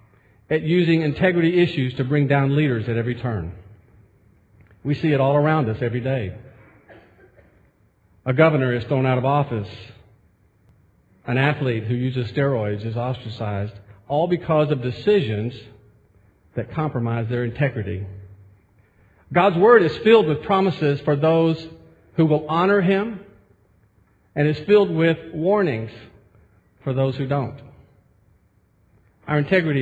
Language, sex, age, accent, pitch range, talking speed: English, male, 50-69, American, 105-150 Hz, 130 wpm